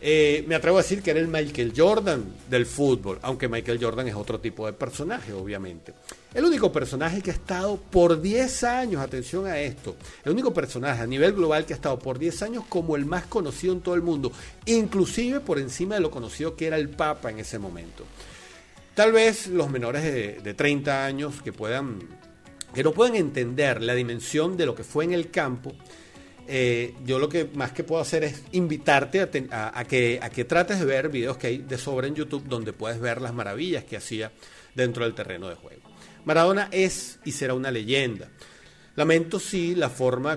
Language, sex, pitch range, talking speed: Spanish, male, 125-175 Hz, 200 wpm